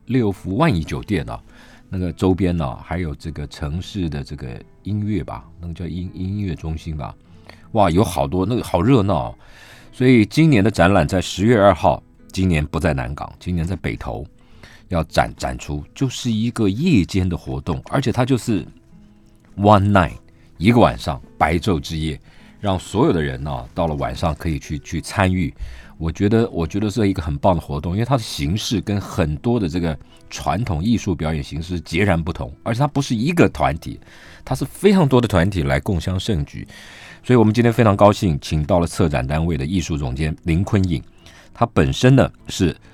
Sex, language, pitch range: male, Chinese, 80-110 Hz